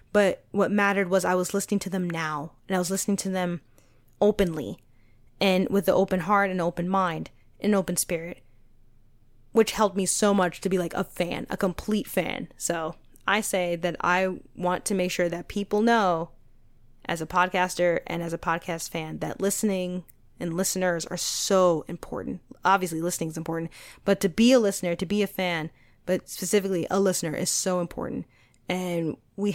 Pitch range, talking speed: 170-195 Hz, 185 wpm